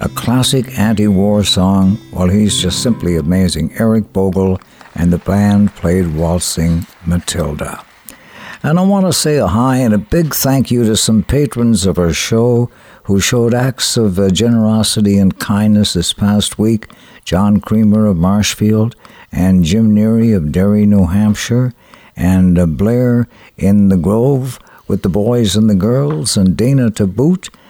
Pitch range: 95-120 Hz